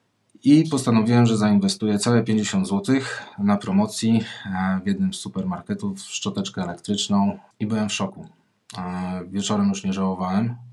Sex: male